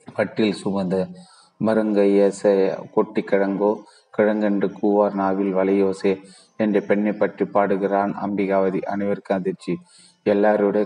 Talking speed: 90 wpm